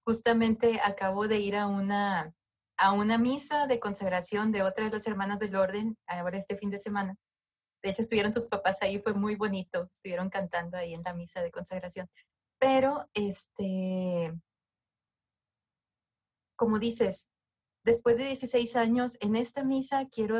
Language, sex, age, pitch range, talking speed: Spanish, female, 30-49, 190-225 Hz, 155 wpm